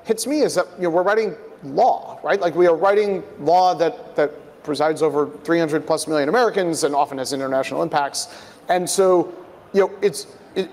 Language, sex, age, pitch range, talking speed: English, male, 30-49, 150-195 Hz, 185 wpm